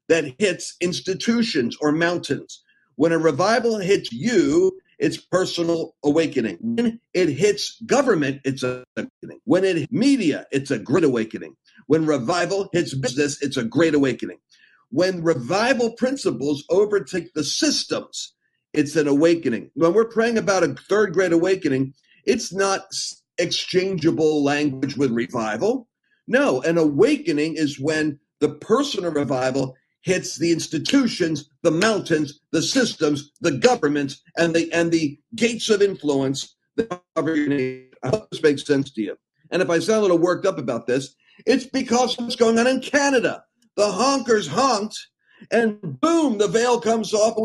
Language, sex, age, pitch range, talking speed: English, male, 50-69, 150-220 Hz, 150 wpm